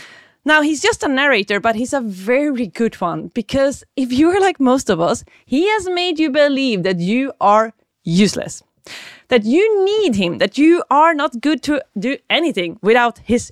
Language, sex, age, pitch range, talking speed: English, female, 30-49, 205-300 Hz, 185 wpm